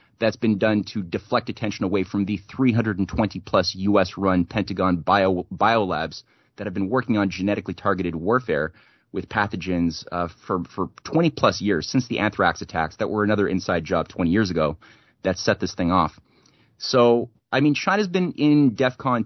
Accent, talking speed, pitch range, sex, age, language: American, 165 wpm, 95-115 Hz, male, 30-49, English